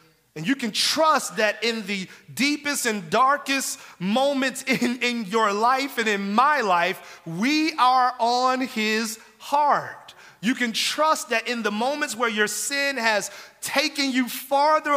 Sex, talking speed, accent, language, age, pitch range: male, 150 wpm, American, English, 30-49, 180-260 Hz